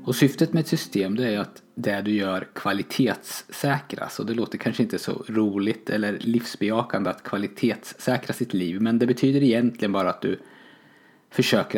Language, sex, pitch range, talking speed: Swedish, male, 105-130 Hz, 170 wpm